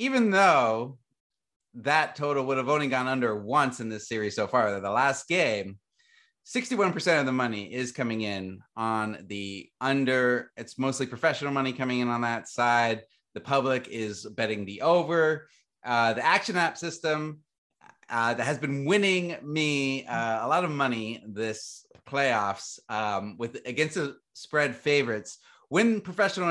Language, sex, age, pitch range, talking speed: English, male, 30-49, 110-150 Hz, 155 wpm